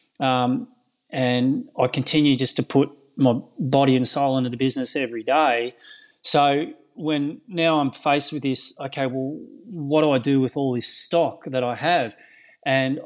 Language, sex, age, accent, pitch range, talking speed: English, male, 20-39, Australian, 130-150 Hz, 170 wpm